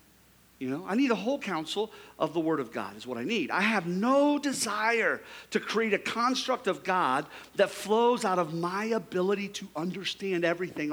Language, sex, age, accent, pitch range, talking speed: English, male, 50-69, American, 195-265 Hz, 190 wpm